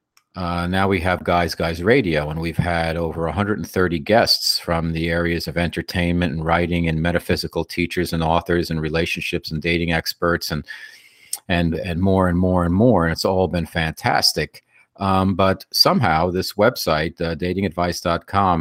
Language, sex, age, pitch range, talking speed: English, male, 50-69, 85-95 Hz, 160 wpm